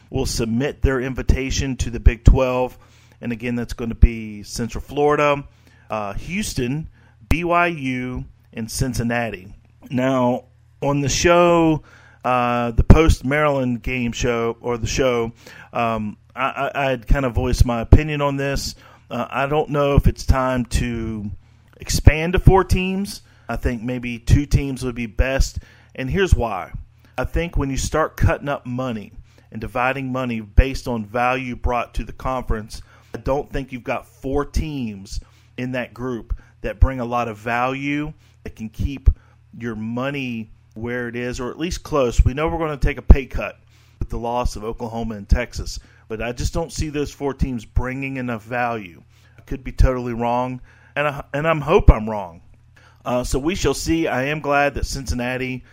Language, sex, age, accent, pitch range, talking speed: English, male, 40-59, American, 115-130 Hz, 170 wpm